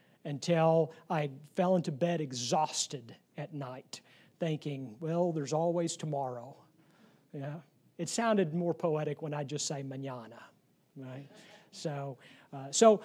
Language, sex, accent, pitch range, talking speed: English, male, American, 155-210 Hz, 125 wpm